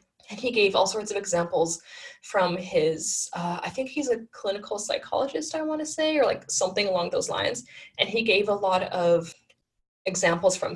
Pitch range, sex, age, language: 175-210 Hz, female, 10-29, English